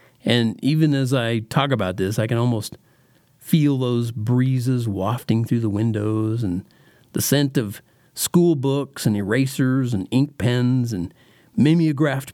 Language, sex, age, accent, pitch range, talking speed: English, male, 50-69, American, 110-145 Hz, 145 wpm